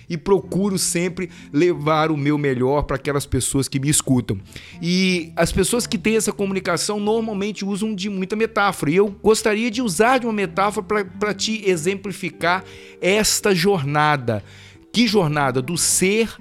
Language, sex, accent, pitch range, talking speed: Portuguese, male, Brazilian, 140-190 Hz, 155 wpm